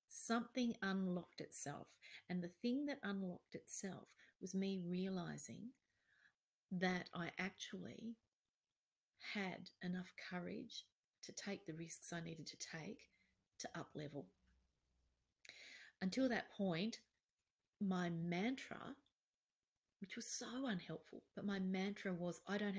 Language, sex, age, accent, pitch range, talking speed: English, female, 40-59, Australian, 165-210 Hz, 115 wpm